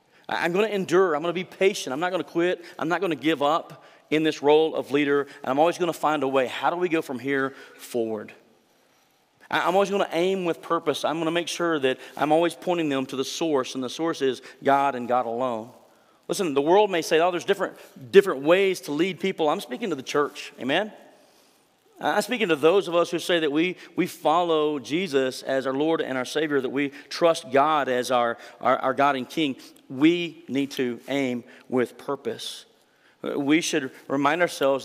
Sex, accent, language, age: male, American, English, 40-59